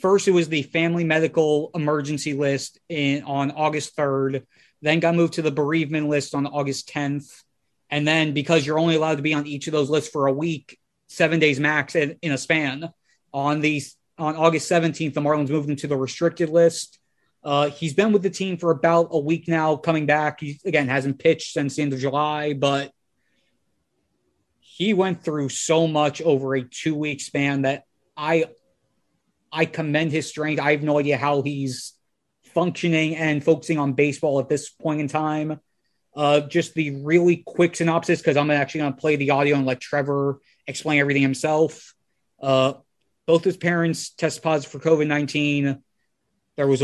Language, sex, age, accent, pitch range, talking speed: English, male, 20-39, American, 140-160 Hz, 185 wpm